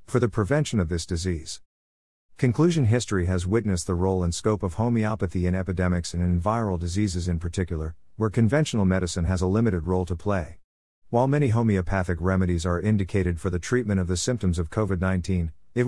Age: 50-69